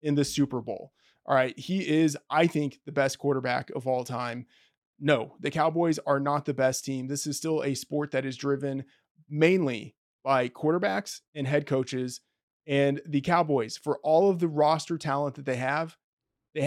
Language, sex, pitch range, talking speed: English, male, 140-165 Hz, 185 wpm